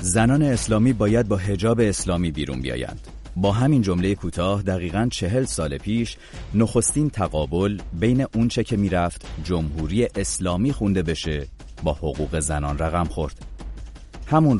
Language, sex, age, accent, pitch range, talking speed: English, male, 30-49, Canadian, 80-105 Hz, 140 wpm